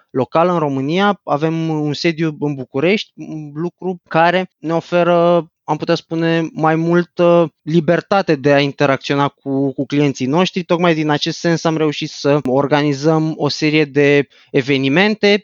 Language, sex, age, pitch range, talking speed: Romanian, male, 20-39, 140-165 Hz, 150 wpm